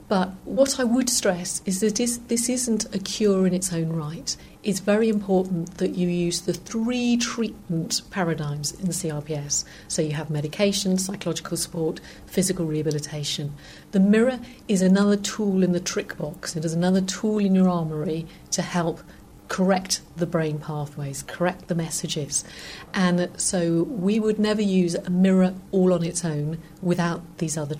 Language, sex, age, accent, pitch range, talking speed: English, female, 50-69, British, 165-195 Hz, 165 wpm